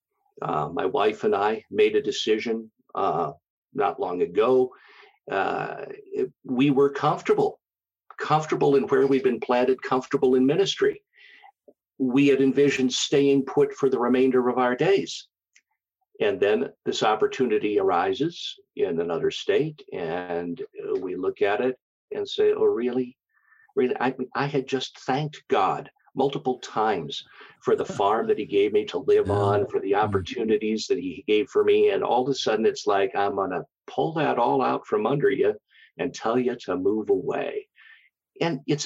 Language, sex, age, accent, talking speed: English, male, 50-69, American, 160 wpm